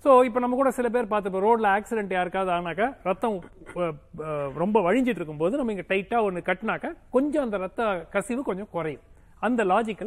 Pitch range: 155-250 Hz